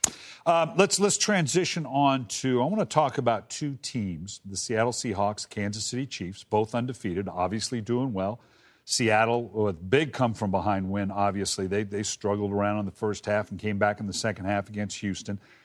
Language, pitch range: English, 105-140 Hz